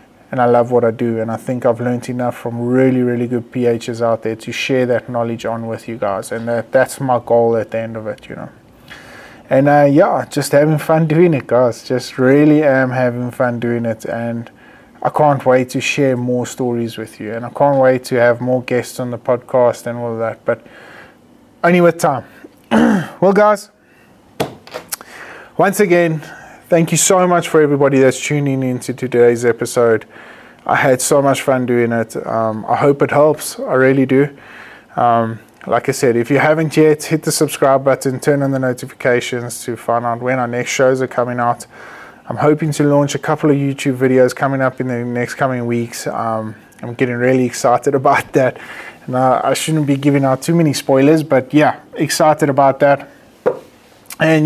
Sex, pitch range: male, 120-145 Hz